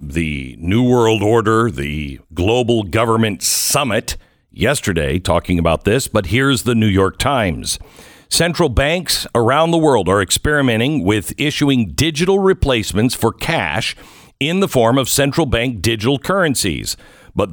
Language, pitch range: English, 105-155 Hz